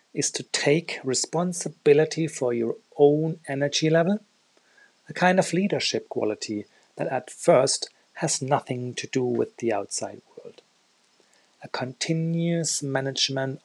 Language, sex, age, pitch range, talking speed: English, male, 40-59, 125-165 Hz, 125 wpm